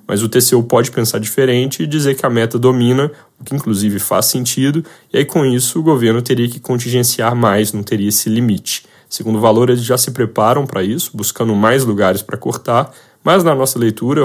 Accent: Brazilian